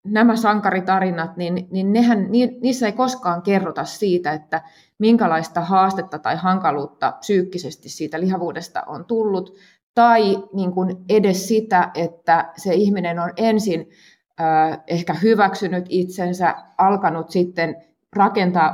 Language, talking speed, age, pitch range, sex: Finnish, 105 wpm, 30-49, 160-195 Hz, female